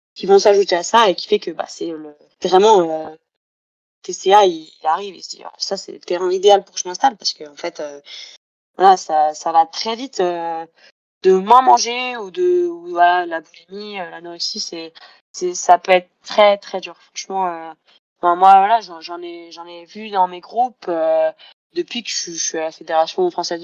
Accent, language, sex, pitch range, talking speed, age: French, French, female, 170-235 Hz, 215 wpm, 20-39